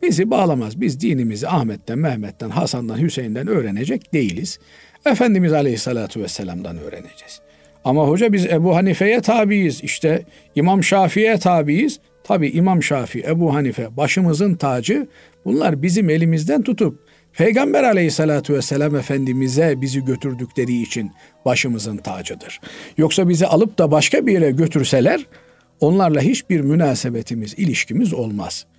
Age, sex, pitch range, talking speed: 50-69, male, 130-195 Hz, 120 wpm